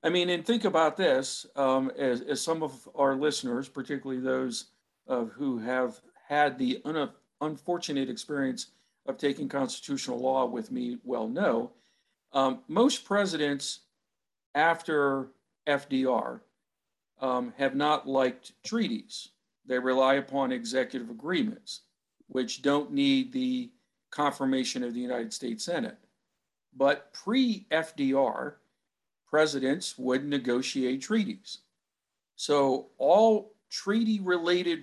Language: English